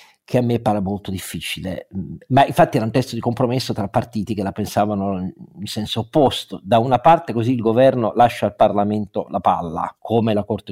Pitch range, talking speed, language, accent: 100-125 Hz, 195 wpm, Italian, native